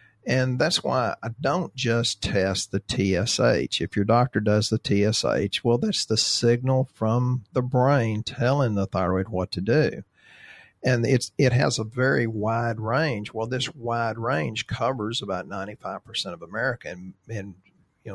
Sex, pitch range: male, 100-125 Hz